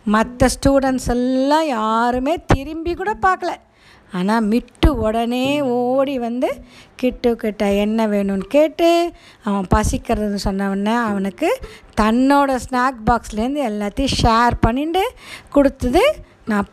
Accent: native